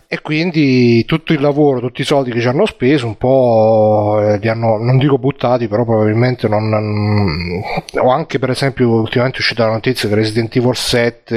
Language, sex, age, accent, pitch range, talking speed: Italian, male, 30-49, native, 115-135 Hz, 190 wpm